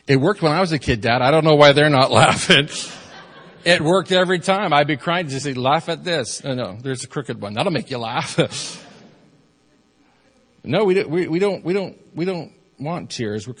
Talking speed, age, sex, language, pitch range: 215 wpm, 40-59, male, English, 105-150 Hz